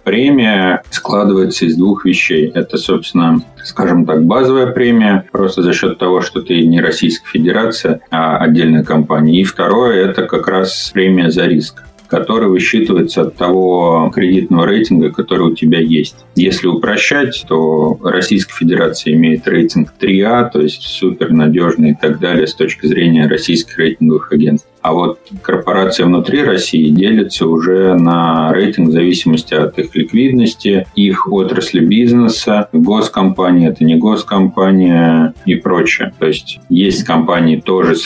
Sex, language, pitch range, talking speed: male, Russian, 80-95 Hz, 145 wpm